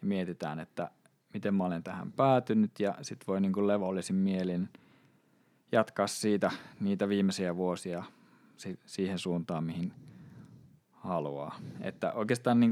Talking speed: 120 wpm